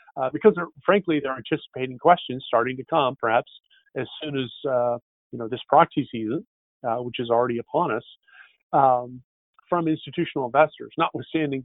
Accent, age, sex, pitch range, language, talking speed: American, 40-59, male, 125-160 Hz, English, 160 wpm